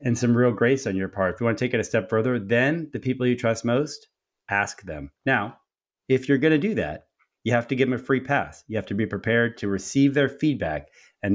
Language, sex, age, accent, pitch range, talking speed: English, male, 30-49, American, 100-130 Hz, 260 wpm